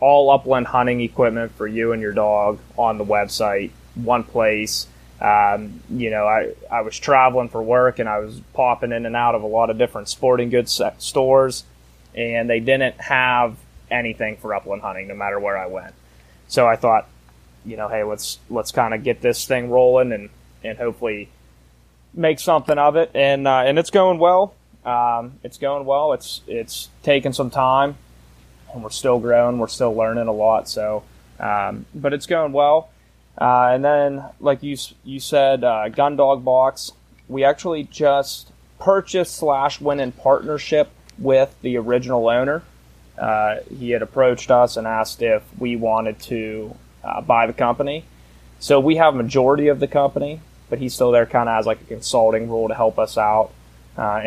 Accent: American